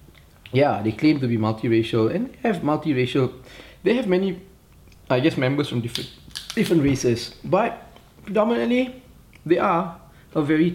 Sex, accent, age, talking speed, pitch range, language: male, Malaysian, 20-39, 140 wpm, 115-170 Hz, English